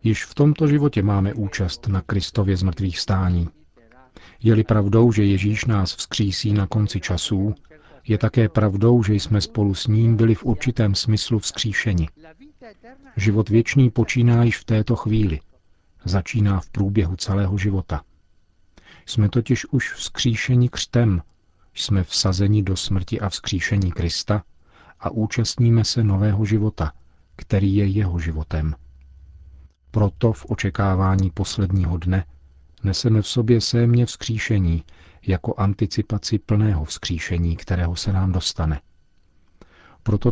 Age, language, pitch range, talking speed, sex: 40-59, Czech, 90-110 Hz, 125 wpm, male